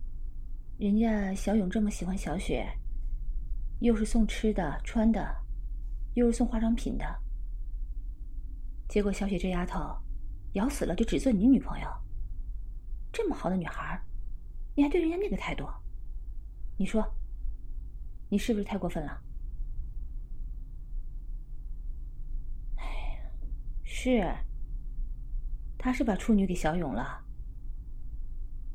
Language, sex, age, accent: English, female, 30-49, Chinese